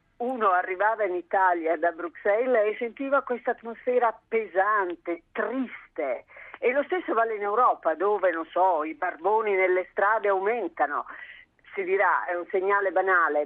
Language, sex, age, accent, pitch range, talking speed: Italian, female, 40-59, native, 165-240 Hz, 145 wpm